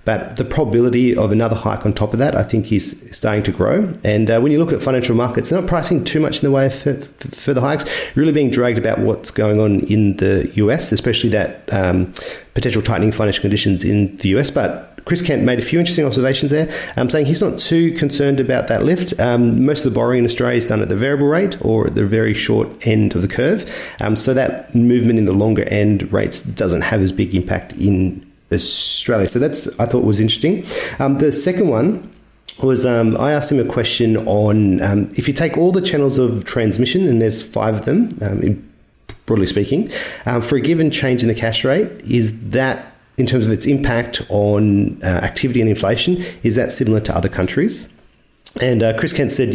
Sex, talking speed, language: male, 215 wpm, English